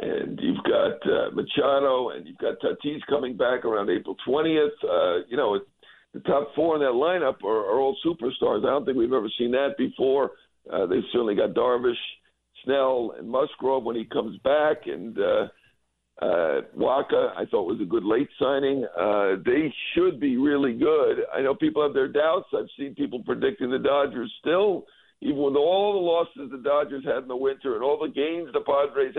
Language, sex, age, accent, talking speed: English, male, 60-79, American, 195 wpm